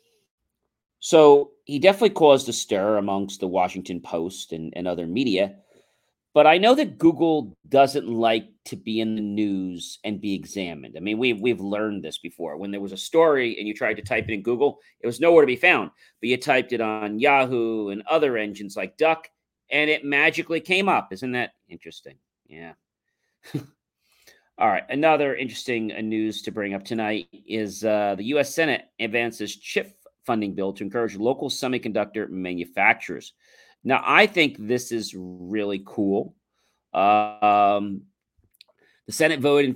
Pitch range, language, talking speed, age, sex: 105-145 Hz, English, 165 wpm, 40-59, male